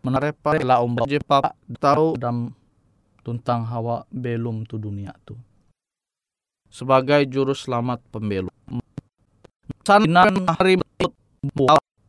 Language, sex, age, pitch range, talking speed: Indonesian, male, 20-39, 115-155 Hz, 105 wpm